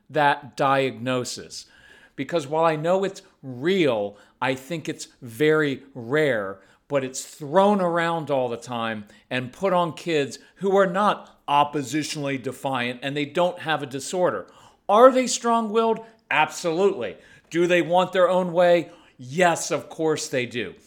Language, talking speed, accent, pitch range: English, 145 wpm, American, 140-195 Hz